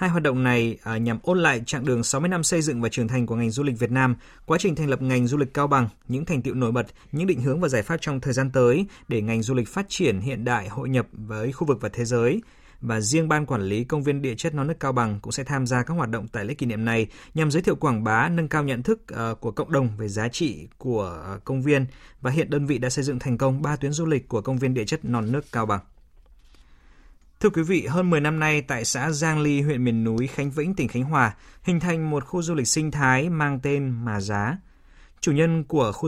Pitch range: 115-150 Hz